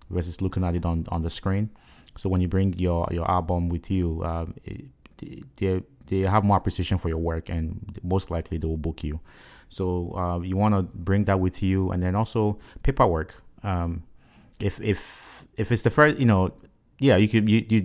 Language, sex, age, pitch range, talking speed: English, male, 30-49, 85-100 Hz, 205 wpm